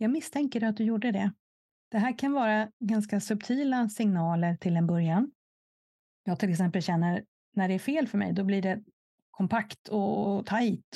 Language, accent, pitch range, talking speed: Swedish, native, 180-220 Hz, 175 wpm